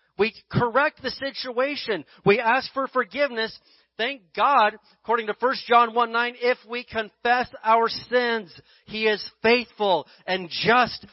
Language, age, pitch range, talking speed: English, 40-59, 185-230 Hz, 140 wpm